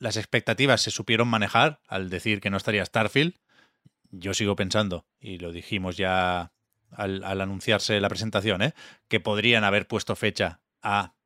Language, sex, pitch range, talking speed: Spanish, male, 100-115 Hz, 155 wpm